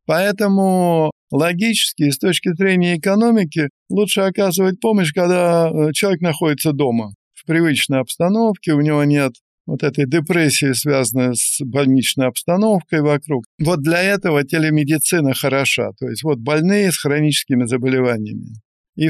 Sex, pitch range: male, 135-180 Hz